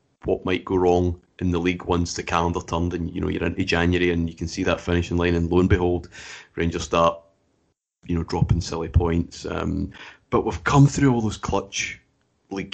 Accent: British